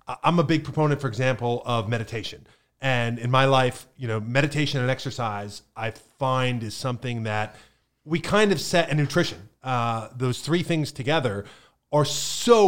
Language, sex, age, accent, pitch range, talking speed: English, male, 30-49, American, 125-150 Hz, 165 wpm